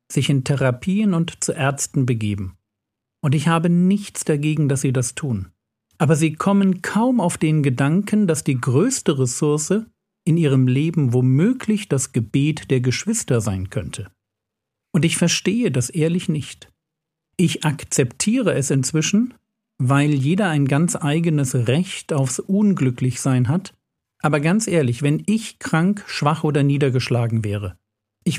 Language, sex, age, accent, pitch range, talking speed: German, male, 50-69, German, 130-175 Hz, 140 wpm